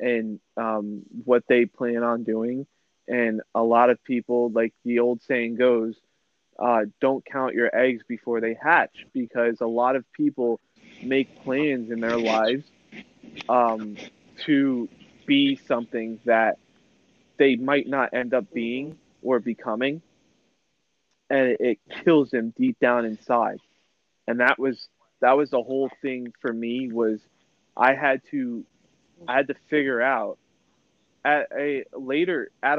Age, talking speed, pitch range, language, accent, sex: 20-39, 140 wpm, 115-135 Hz, English, American, male